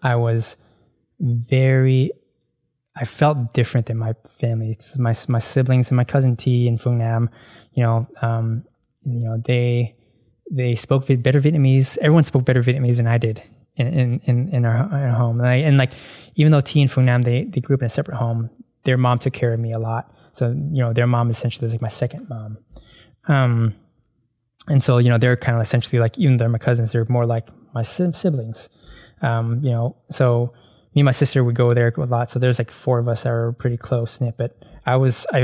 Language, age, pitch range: English, 20-39, 115-130 Hz